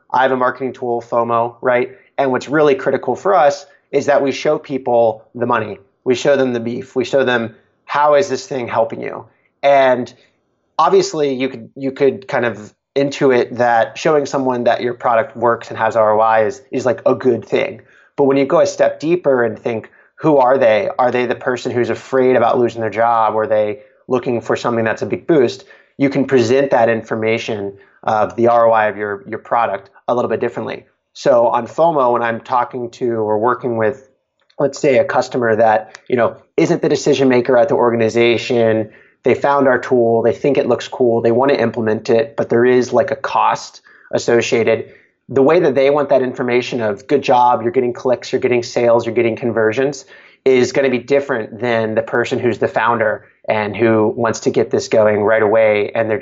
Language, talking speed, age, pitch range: English, 205 wpm, 30-49, 115-135 Hz